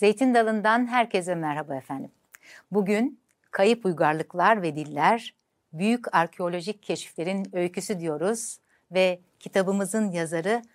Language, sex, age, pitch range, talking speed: Turkish, female, 60-79, 165-220 Hz, 100 wpm